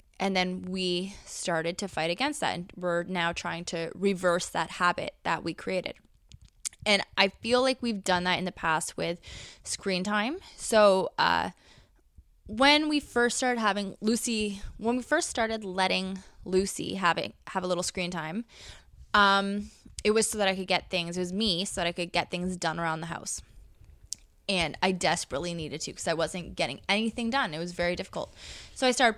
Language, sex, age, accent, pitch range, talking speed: English, female, 20-39, American, 175-215 Hz, 190 wpm